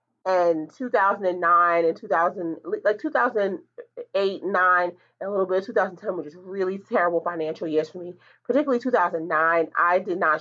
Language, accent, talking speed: English, American, 150 wpm